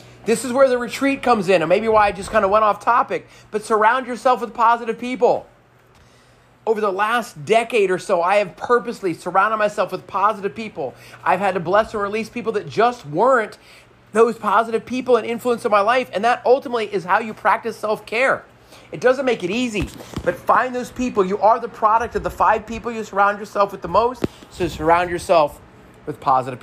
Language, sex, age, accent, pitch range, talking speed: English, male, 40-59, American, 190-245 Hz, 205 wpm